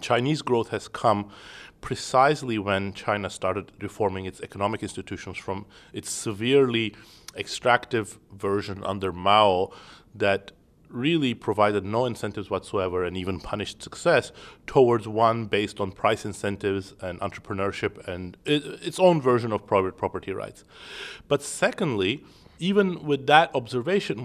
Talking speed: 125 wpm